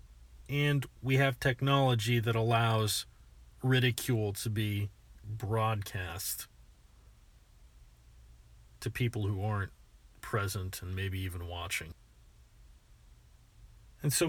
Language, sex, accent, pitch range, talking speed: English, male, American, 95-130 Hz, 90 wpm